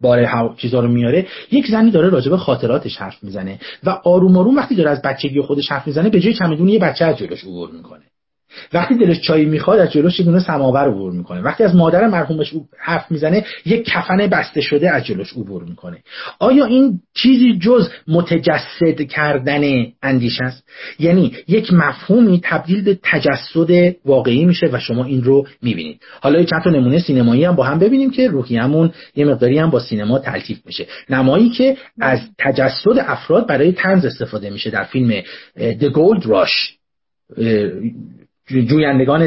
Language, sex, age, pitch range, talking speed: Persian, male, 40-59, 130-185 Hz, 160 wpm